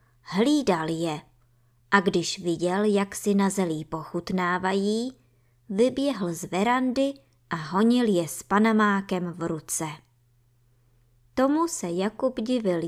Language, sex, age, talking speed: Czech, male, 20-39, 110 wpm